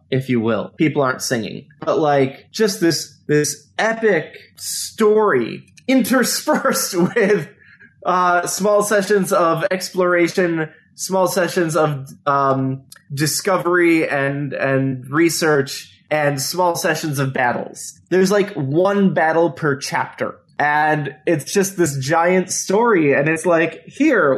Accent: American